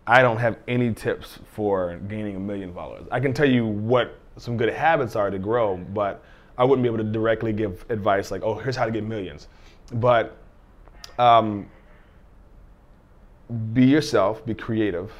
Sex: male